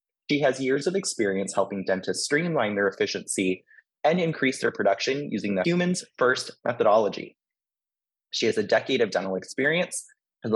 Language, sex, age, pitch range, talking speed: English, male, 20-39, 100-145 Hz, 155 wpm